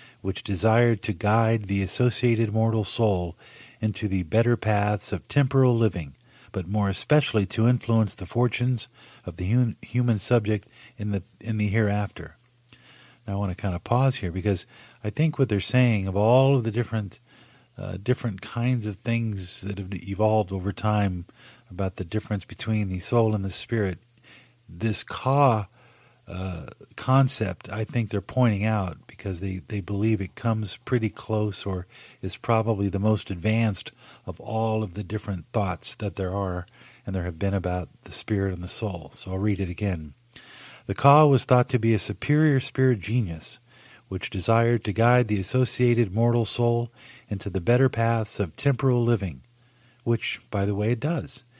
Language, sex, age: English, male, 50-69